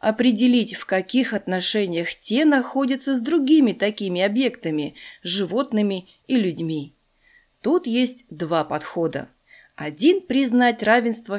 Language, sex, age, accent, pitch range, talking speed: Russian, female, 30-49, native, 190-270 Hz, 105 wpm